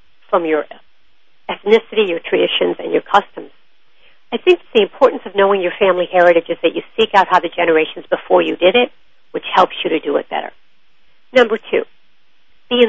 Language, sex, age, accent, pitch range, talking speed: English, female, 50-69, American, 180-280 Hz, 185 wpm